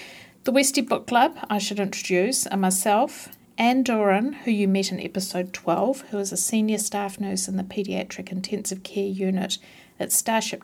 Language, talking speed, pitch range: English, 175 wpm, 190-235 Hz